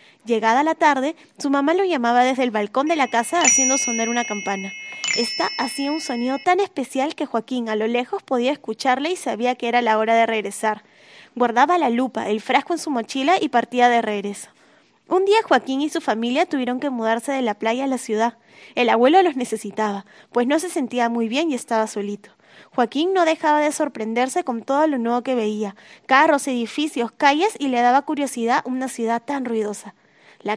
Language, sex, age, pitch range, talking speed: Spanish, female, 10-29, 230-305 Hz, 200 wpm